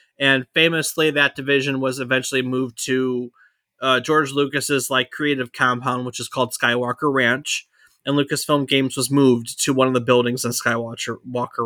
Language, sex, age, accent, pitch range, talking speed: English, male, 20-39, American, 125-150 Hz, 160 wpm